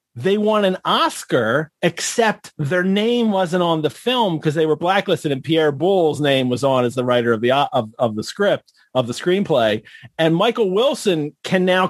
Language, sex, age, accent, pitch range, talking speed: English, male, 40-59, American, 120-185 Hz, 190 wpm